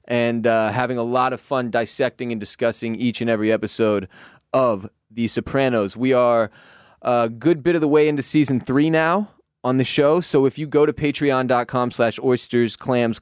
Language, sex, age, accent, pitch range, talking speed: English, male, 20-39, American, 115-135 Hz, 185 wpm